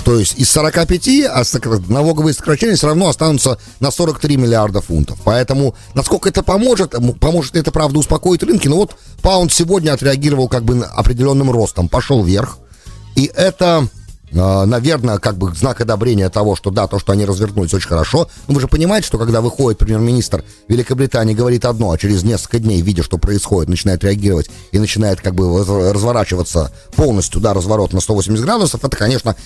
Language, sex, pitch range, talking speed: English, male, 95-130 Hz, 165 wpm